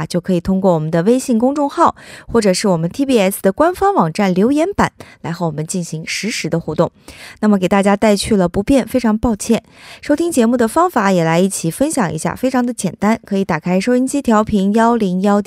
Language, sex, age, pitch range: Korean, female, 20-39, 180-255 Hz